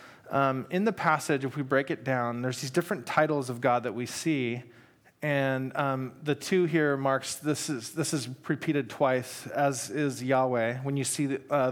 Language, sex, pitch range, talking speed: English, male, 130-155 Hz, 195 wpm